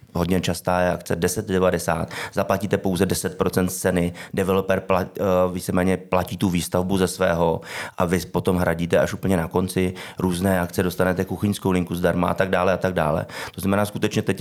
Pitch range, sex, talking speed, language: 85-95 Hz, male, 160 wpm, Czech